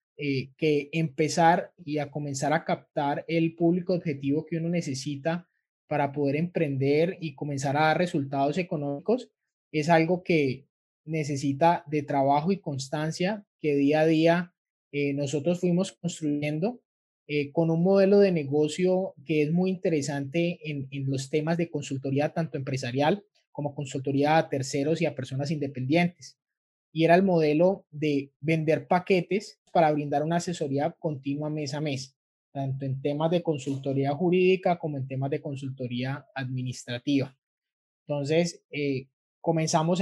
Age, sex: 20-39, male